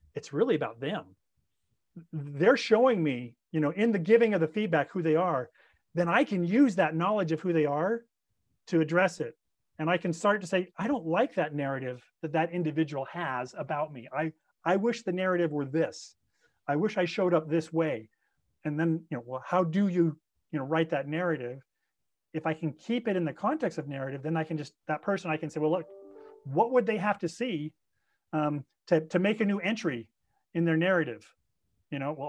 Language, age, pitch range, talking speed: English, 40-59, 150-185 Hz, 215 wpm